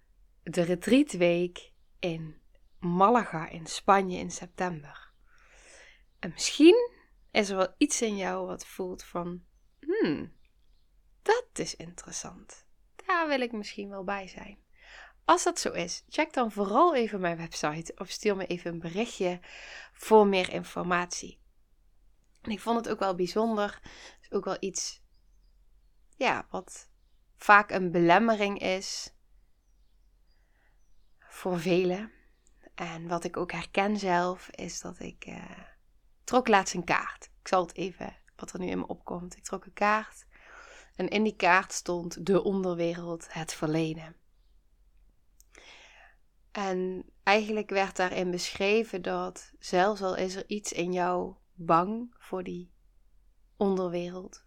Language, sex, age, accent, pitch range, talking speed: Dutch, female, 20-39, Dutch, 175-205 Hz, 130 wpm